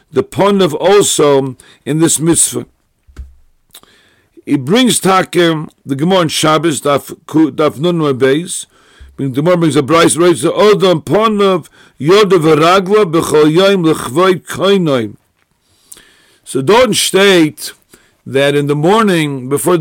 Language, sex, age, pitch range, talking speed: English, male, 50-69, 145-195 Hz, 120 wpm